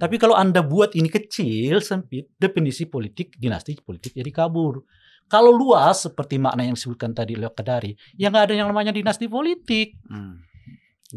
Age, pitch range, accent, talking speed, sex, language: 50-69, 115-195 Hz, native, 155 wpm, male, Indonesian